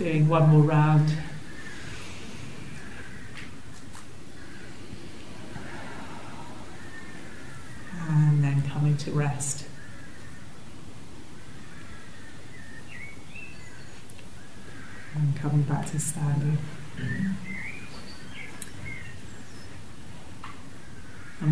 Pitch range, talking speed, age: 150-195 Hz, 40 wpm, 40-59